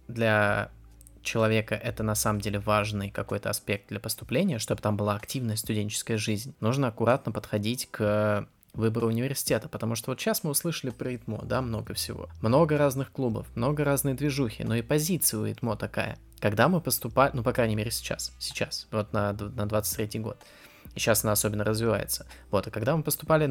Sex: male